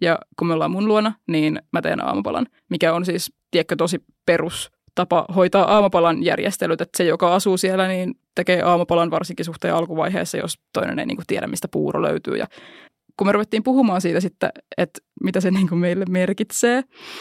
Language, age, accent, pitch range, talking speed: Finnish, 20-39, native, 175-205 Hz, 180 wpm